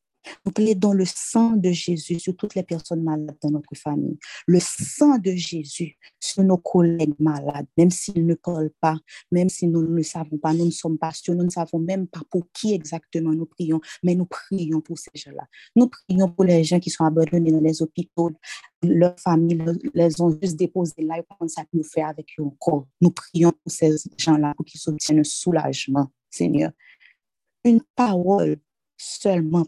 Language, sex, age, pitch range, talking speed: French, female, 30-49, 160-190 Hz, 190 wpm